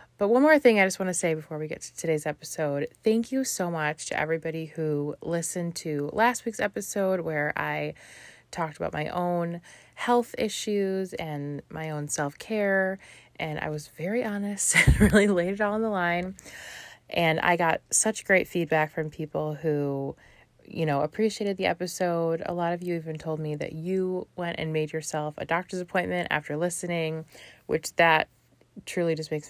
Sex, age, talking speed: female, 20-39, 180 wpm